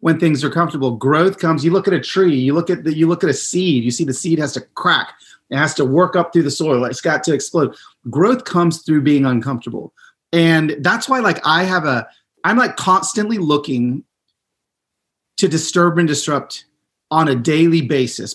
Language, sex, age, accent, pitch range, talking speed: English, male, 30-49, American, 140-180 Hz, 205 wpm